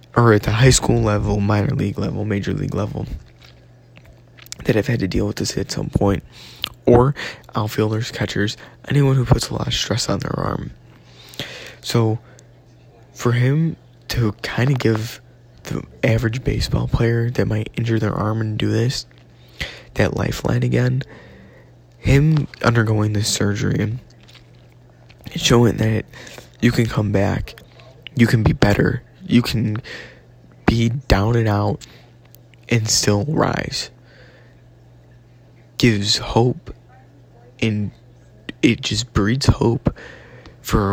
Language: English